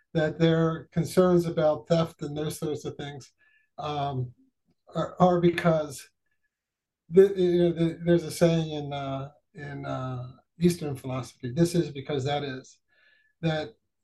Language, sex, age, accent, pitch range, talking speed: English, male, 50-69, American, 145-175 Hz, 140 wpm